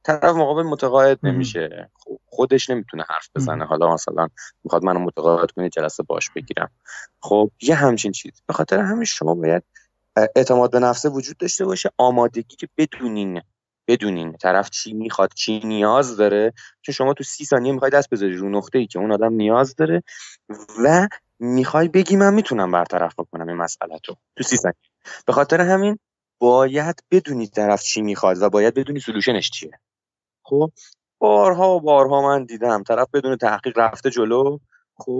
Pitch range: 105-140 Hz